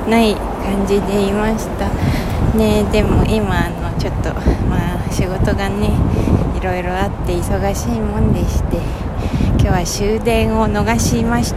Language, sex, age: Japanese, female, 20-39